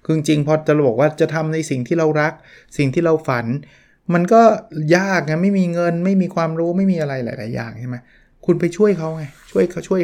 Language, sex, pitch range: Thai, male, 120-155 Hz